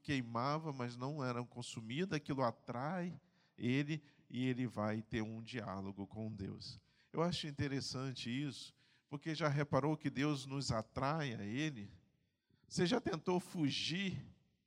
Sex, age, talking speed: male, 50-69, 135 wpm